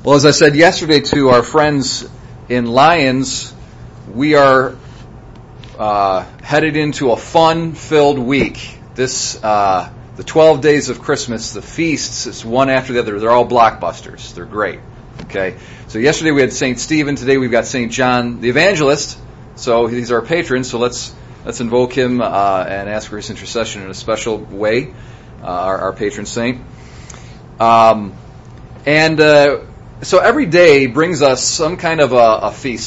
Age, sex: 30-49, male